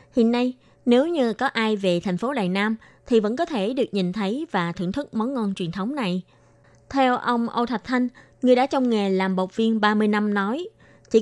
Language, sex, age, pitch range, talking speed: Vietnamese, female, 20-39, 195-245 Hz, 225 wpm